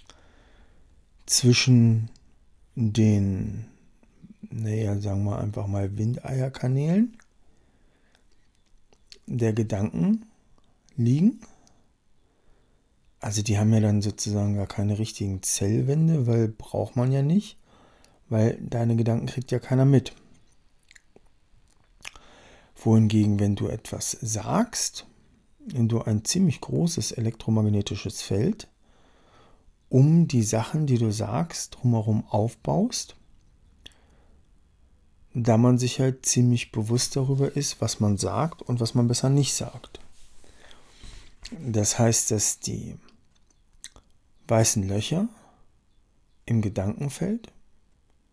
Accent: German